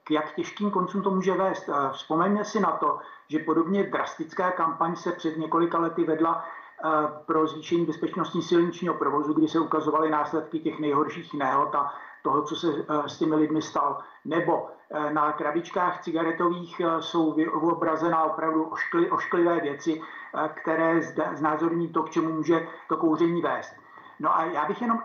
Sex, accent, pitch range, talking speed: male, native, 155-185 Hz, 150 wpm